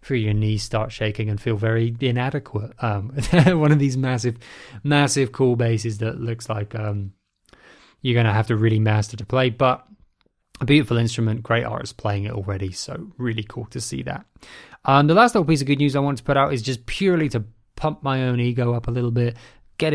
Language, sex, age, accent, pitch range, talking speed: English, male, 20-39, British, 110-135 Hz, 210 wpm